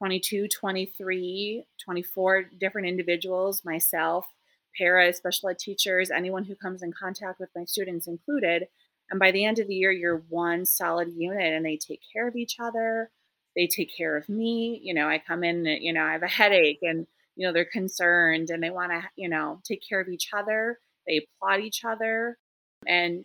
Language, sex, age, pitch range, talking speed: English, female, 30-49, 170-200 Hz, 190 wpm